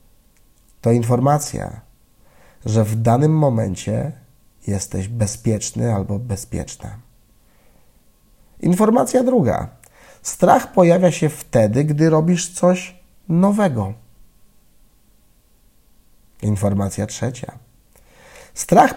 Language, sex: Polish, male